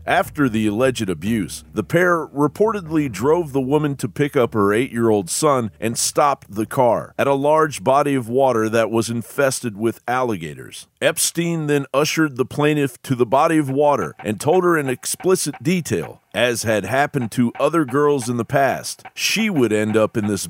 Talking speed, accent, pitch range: 180 wpm, American, 120-165 Hz